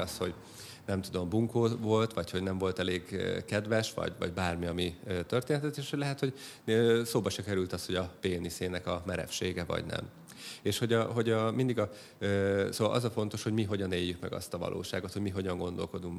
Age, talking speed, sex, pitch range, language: 30-49, 205 wpm, male, 95-120 Hz, Hungarian